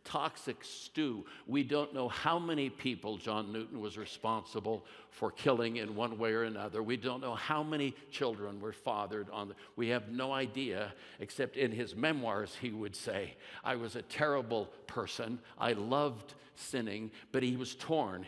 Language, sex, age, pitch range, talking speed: English, male, 60-79, 110-135 Hz, 170 wpm